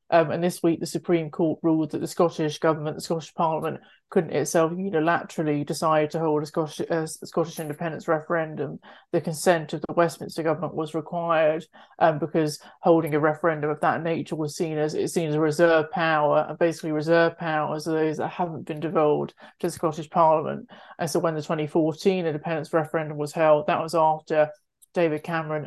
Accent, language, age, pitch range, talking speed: British, English, 30-49, 155-165 Hz, 195 wpm